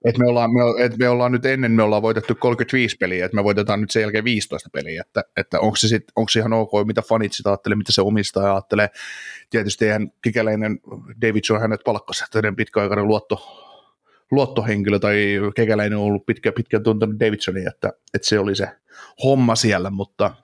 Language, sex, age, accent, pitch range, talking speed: Finnish, male, 30-49, native, 100-120 Hz, 190 wpm